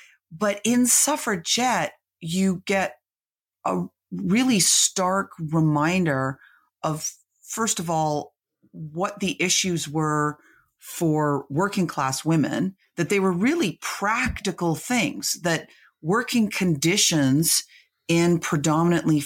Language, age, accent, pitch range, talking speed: English, 40-59, American, 140-175 Hz, 100 wpm